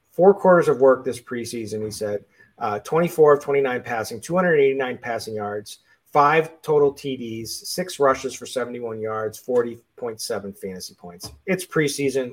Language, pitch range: English, 125-175 Hz